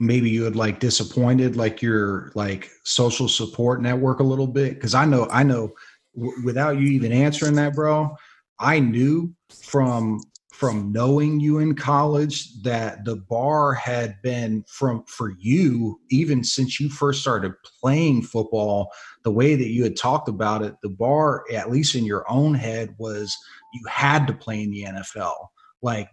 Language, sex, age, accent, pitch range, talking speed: English, male, 30-49, American, 115-140 Hz, 170 wpm